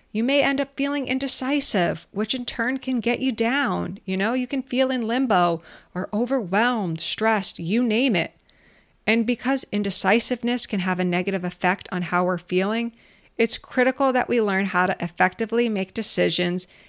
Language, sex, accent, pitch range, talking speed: English, female, American, 185-240 Hz, 170 wpm